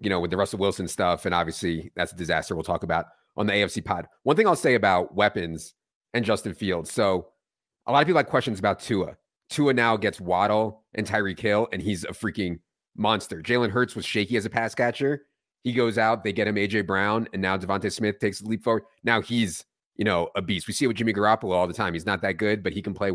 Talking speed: 250 wpm